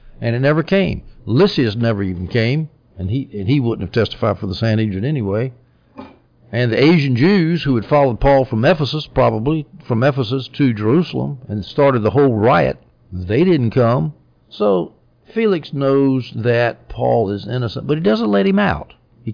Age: 60-79